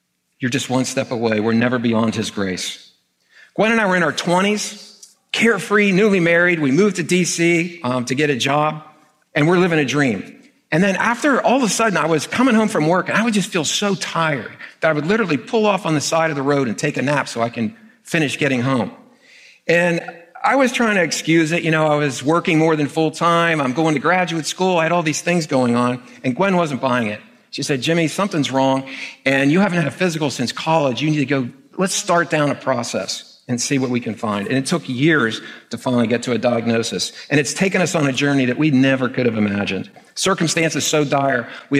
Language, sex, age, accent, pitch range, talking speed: English, male, 50-69, American, 130-175 Hz, 235 wpm